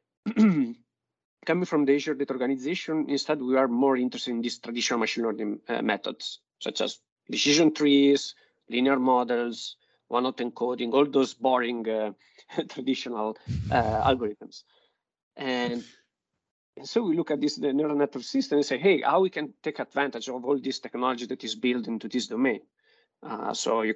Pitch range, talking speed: 120-145 Hz, 160 wpm